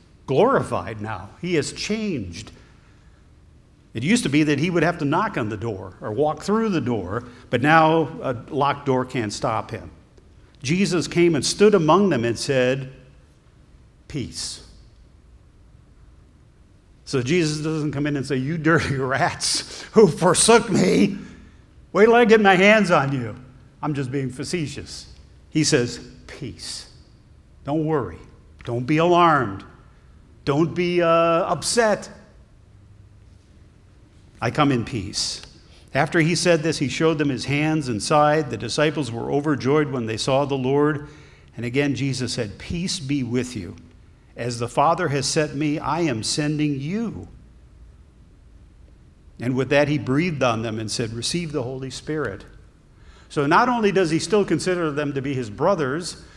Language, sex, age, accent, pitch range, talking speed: English, male, 60-79, American, 120-165 Hz, 155 wpm